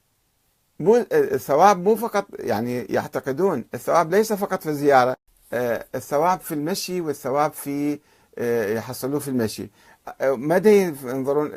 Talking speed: 110 wpm